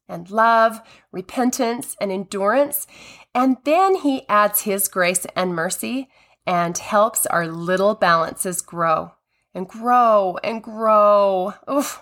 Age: 30-49